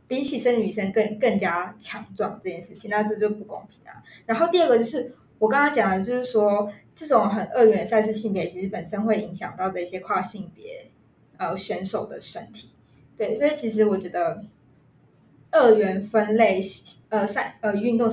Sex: female